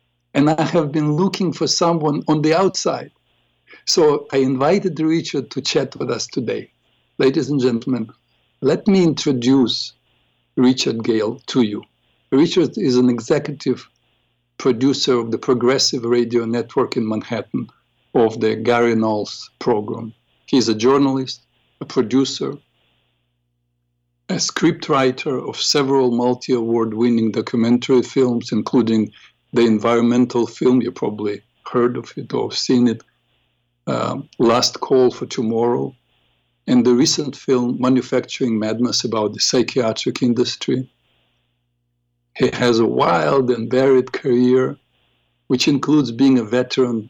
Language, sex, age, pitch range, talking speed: English, male, 60-79, 115-130 Hz, 125 wpm